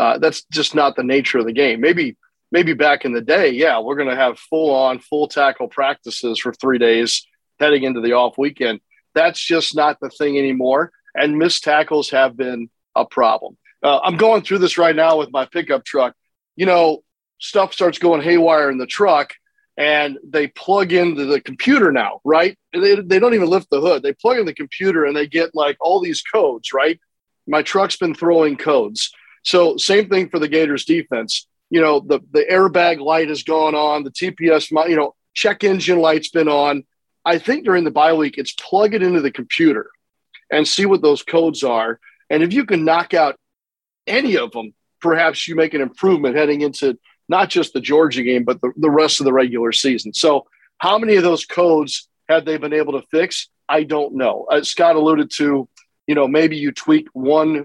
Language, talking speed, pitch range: English, 200 wpm, 140-175 Hz